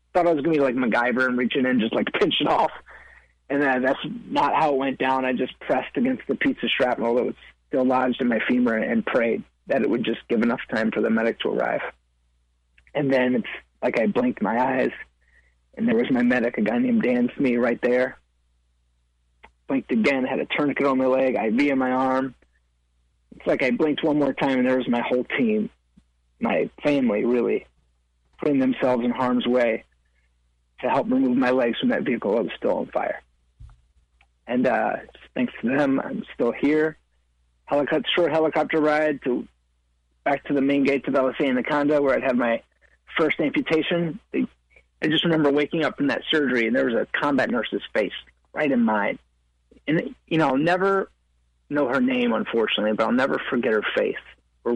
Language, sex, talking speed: English, male, 200 wpm